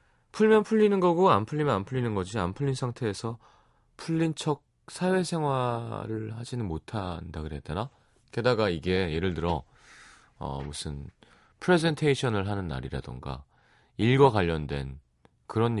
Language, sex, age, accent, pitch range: Korean, male, 30-49, native, 85-140 Hz